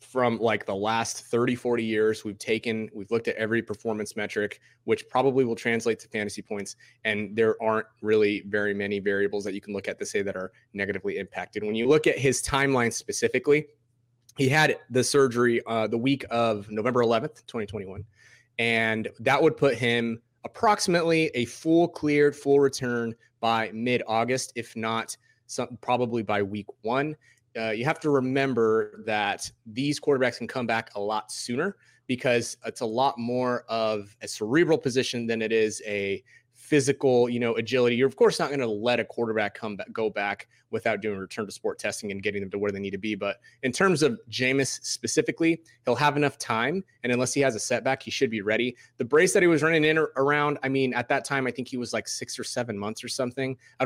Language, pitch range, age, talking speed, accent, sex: English, 110-135 Hz, 30-49, 205 wpm, American, male